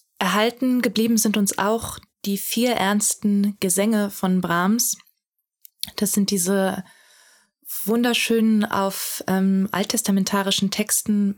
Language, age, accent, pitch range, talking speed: German, 20-39, German, 195-225 Hz, 100 wpm